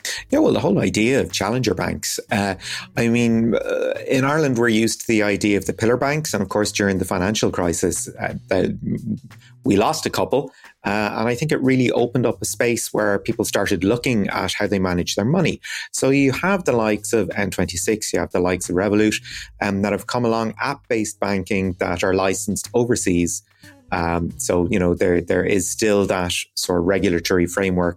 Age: 30-49